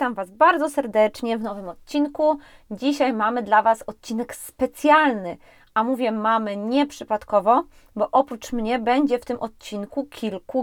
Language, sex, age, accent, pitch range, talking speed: Polish, female, 20-39, native, 220-285 Hz, 140 wpm